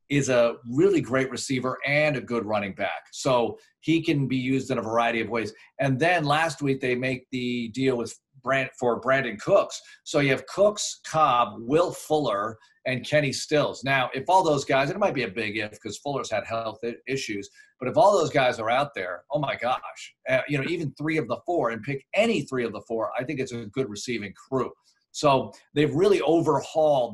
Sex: male